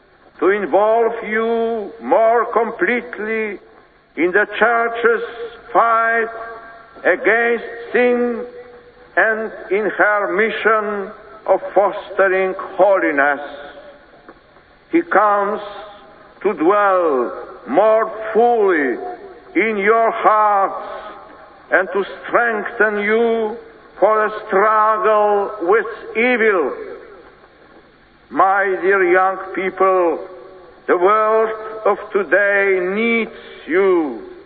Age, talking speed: 60-79, 80 wpm